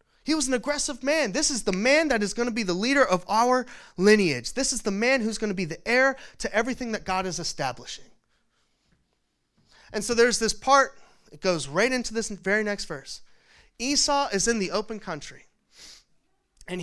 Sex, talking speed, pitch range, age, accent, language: male, 195 wpm, 170-235 Hz, 30-49, American, English